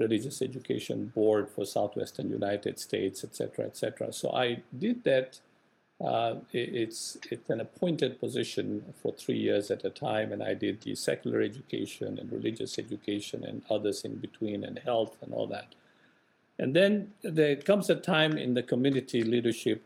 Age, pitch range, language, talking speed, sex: 50-69, 105-140 Hz, English, 165 wpm, male